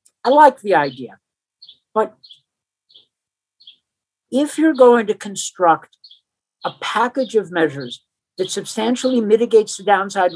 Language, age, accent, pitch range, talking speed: English, 50-69, American, 185-255 Hz, 110 wpm